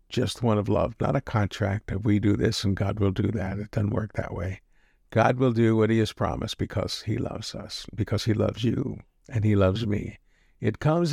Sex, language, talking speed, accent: male, English, 225 wpm, American